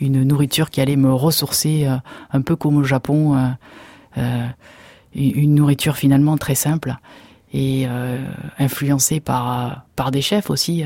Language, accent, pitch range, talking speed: French, French, 135-155 Hz, 140 wpm